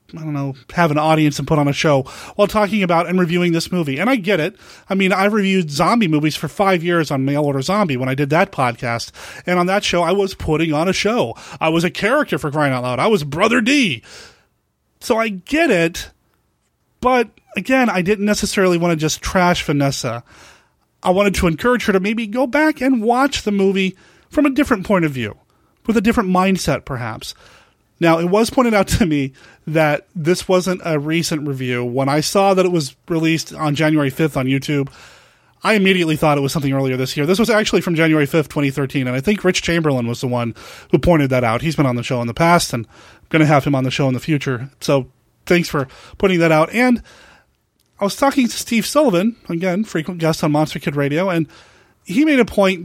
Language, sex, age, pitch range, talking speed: English, male, 30-49, 145-200 Hz, 225 wpm